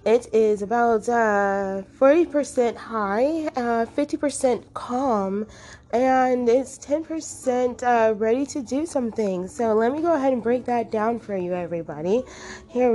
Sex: female